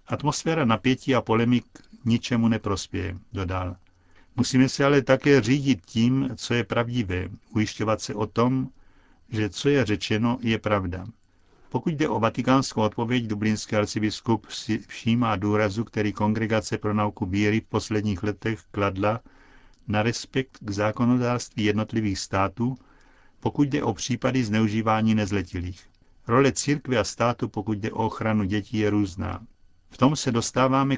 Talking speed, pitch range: 140 wpm, 105-120 Hz